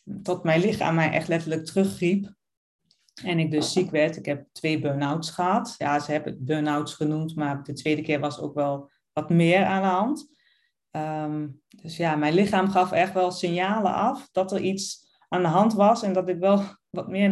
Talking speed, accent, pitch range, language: 200 wpm, Dutch, 160-195 Hz, Dutch